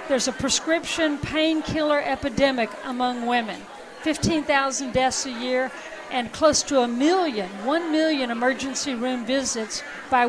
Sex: female